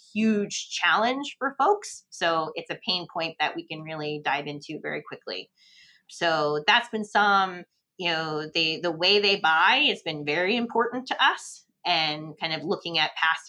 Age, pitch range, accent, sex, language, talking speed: 30-49, 150-185 Hz, American, female, English, 180 wpm